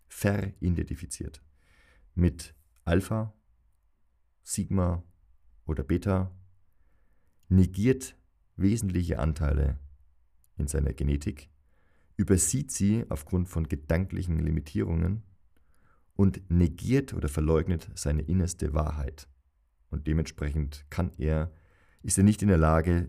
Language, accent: German, German